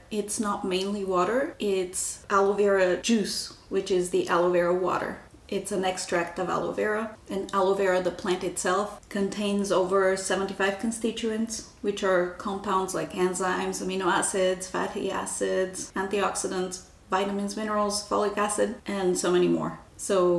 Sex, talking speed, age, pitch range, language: female, 145 wpm, 30-49, 180-205 Hz, English